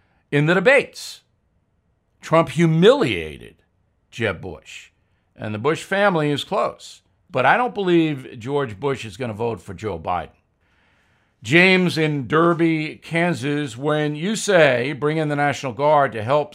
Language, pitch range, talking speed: English, 120-170 Hz, 145 wpm